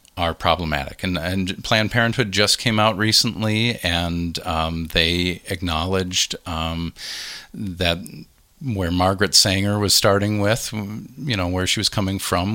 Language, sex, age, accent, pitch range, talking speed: English, male, 40-59, American, 85-100 Hz, 140 wpm